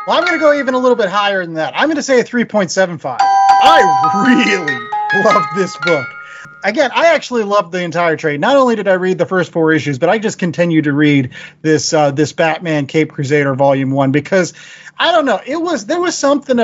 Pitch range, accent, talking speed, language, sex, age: 160-220 Hz, American, 225 wpm, English, male, 30-49